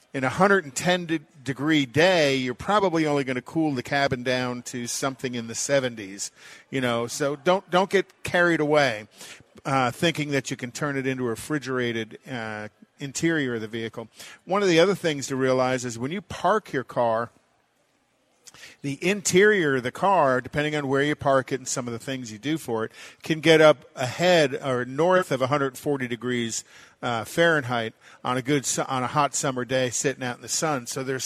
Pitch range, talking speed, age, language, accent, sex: 125-150 Hz, 195 wpm, 50-69, English, American, male